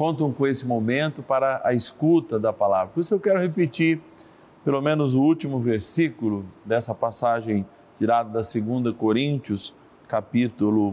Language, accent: Portuguese, Brazilian